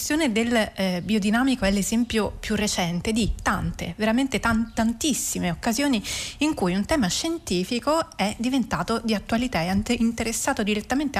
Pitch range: 200-265 Hz